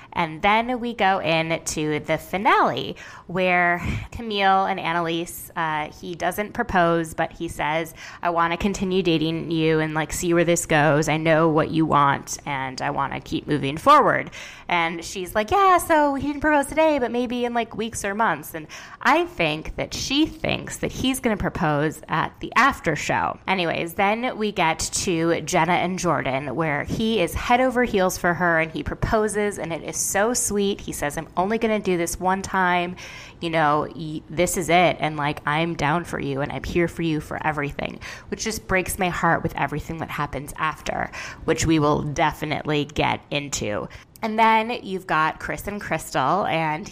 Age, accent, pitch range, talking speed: 20-39, American, 155-195 Hz, 190 wpm